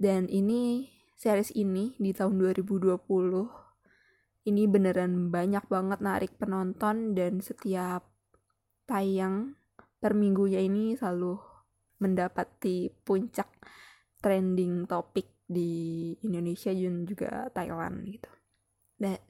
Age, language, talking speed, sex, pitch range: 20-39, Indonesian, 95 wpm, female, 185-225 Hz